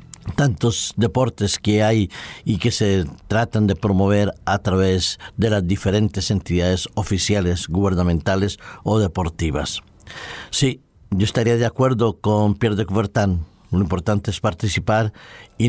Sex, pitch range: male, 100-120 Hz